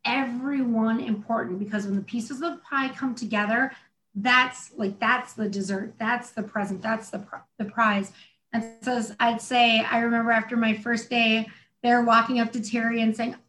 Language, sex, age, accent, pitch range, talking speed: English, female, 30-49, American, 210-245 Hz, 180 wpm